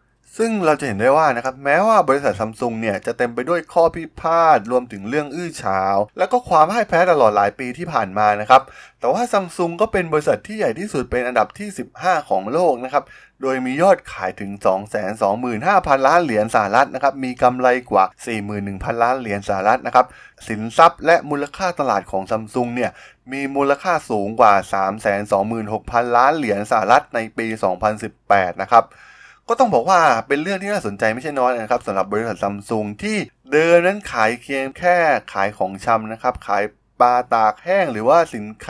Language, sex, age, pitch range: Thai, male, 20-39, 110-150 Hz